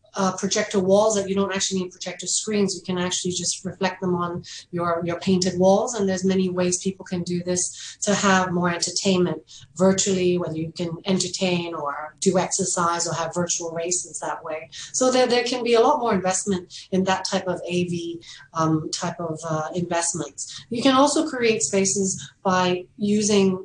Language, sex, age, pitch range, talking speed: English, female, 30-49, 175-200 Hz, 185 wpm